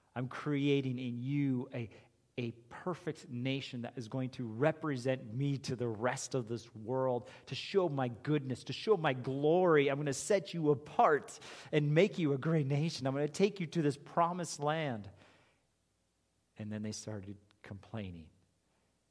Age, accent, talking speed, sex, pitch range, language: 40-59, American, 170 wpm, male, 90-135 Hz, English